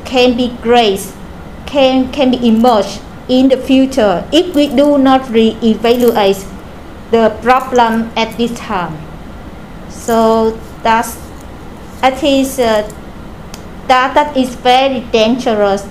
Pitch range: 225-260 Hz